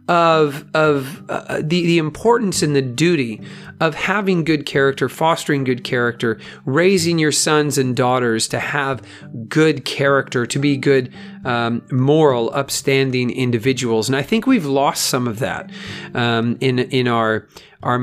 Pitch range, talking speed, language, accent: 120-150 Hz, 150 wpm, English, American